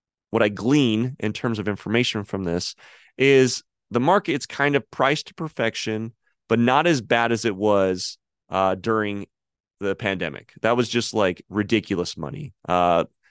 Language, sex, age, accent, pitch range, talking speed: English, male, 30-49, American, 100-130 Hz, 160 wpm